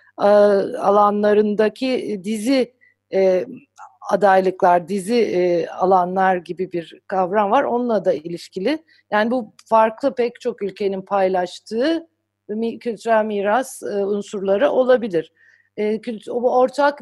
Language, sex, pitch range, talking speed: Turkish, female, 185-245 Hz, 85 wpm